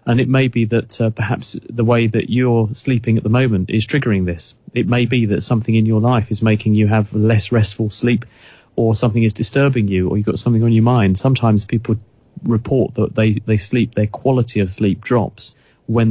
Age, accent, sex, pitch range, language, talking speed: 30-49, British, male, 105-120 Hz, English, 215 wpm